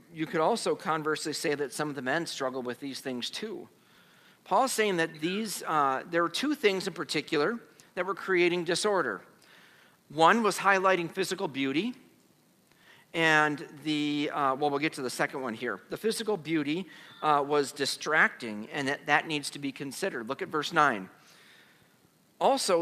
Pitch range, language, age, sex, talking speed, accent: 145-185 Hz, English, 50-69, male, 170 wpm, American